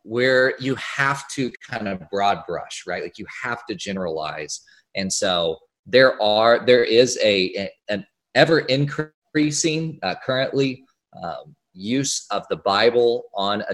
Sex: male